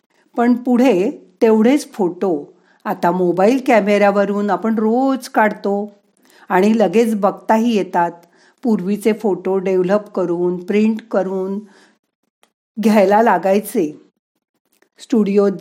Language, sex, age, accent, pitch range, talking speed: Marathi, female, 40-59, native, 185-235 Hz, 90 wpm